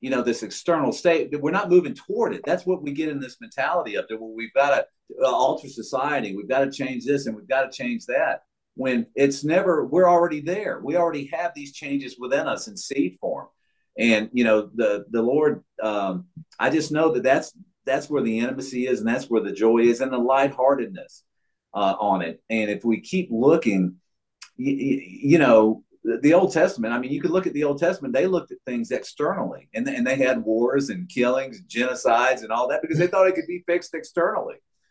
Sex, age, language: male, 50-69, English